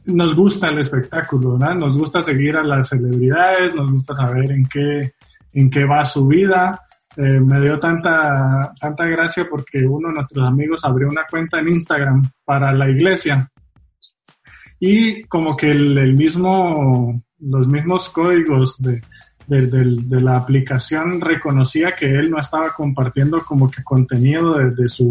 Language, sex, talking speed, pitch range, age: Spanish, male, 165 wpm, 135-170 Hz, 20-39